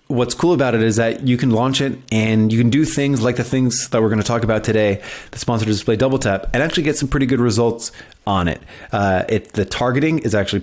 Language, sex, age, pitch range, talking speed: English, male, 30-49, 105-130 Hz, 250 wpm